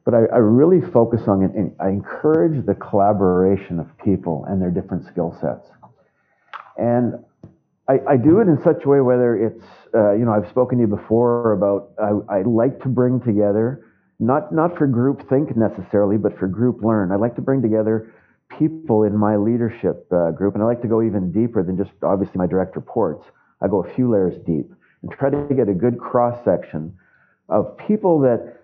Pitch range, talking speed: 100-130 Hz, 200 wpm